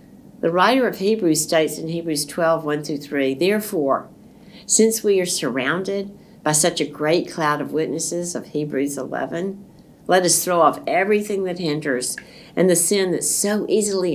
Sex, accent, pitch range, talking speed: female, American, 160-210 Hz, 165 wpm